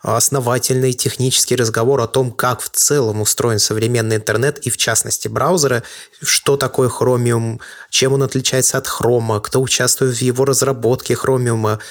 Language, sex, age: Russian, male, 20-39